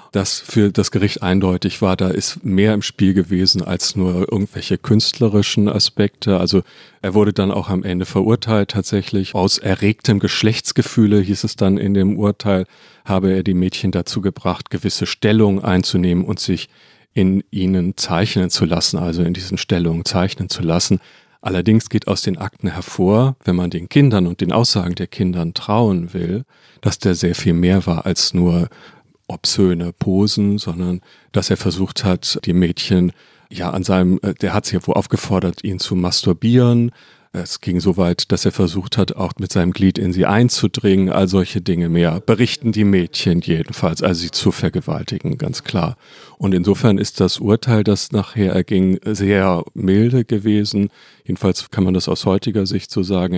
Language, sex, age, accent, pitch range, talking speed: German, male, 40-59, German, 90-105 Hz, 170 wpm